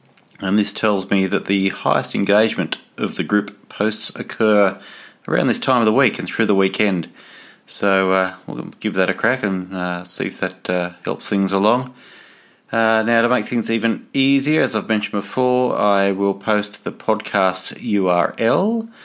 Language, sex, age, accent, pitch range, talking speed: English, male, 30-49, Australian, 95-110 Hz, 175 wpm